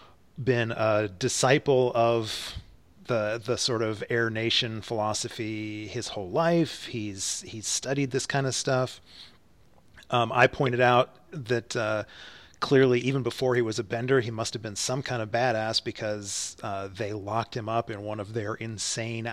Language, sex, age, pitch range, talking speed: English, male, 30-49, 110-135 Hz, 160 wpm